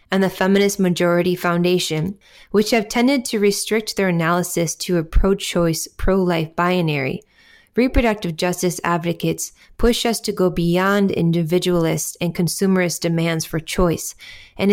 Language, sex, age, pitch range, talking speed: English, female, 20-39, 165-200 Hz, 130 wpm